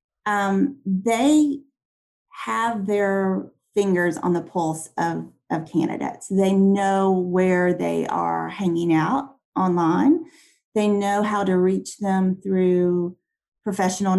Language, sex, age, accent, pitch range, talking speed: English, female, 30-49, American, 170-210 Hz, 115 wpm